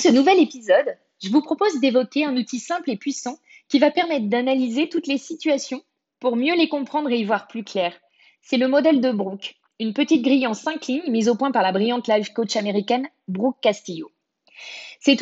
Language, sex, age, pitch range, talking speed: French, female, 20-39, 225-305 Hz, 205 wpm